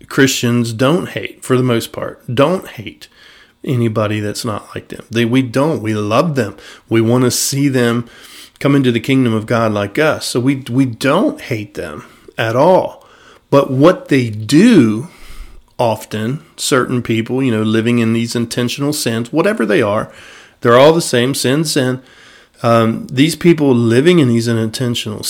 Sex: male